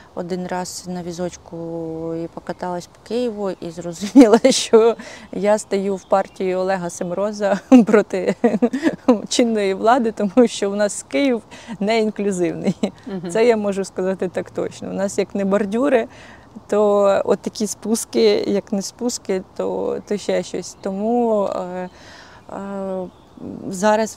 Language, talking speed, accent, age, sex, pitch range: Ukrainian, 130 wpm, native, 20-39, female, 180-210 Hz